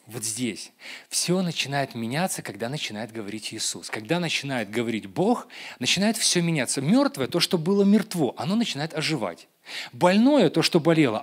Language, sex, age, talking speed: Russian, male, 30-49, 150 wpm